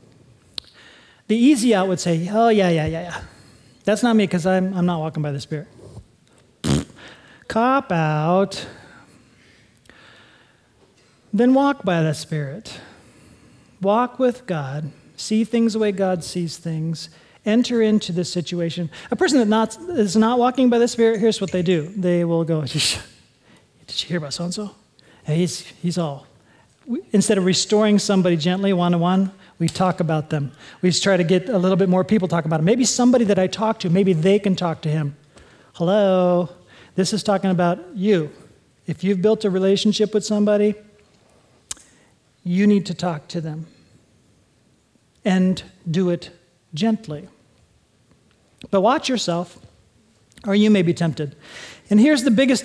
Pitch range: 165-215 Hz